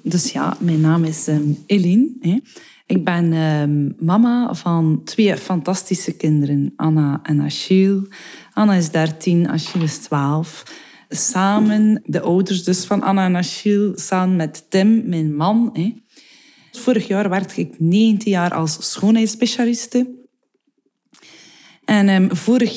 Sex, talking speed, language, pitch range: female, 120 wpm, Dutch, 165-215 Hz